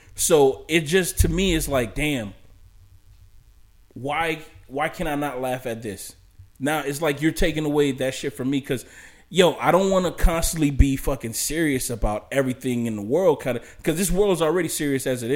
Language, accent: English, American